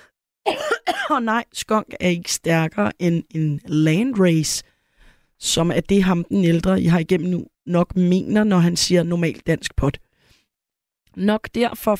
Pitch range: 160-210 Hz